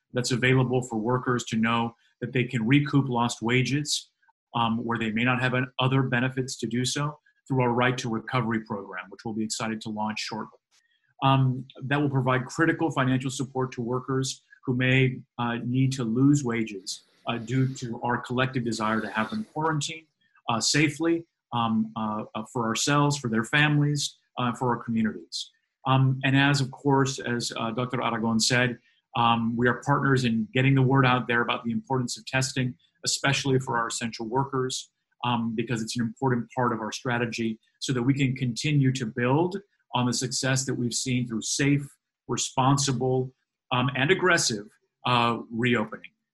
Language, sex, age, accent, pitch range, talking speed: English, male, 40-59, American, 115-130 Hz, 175 wpm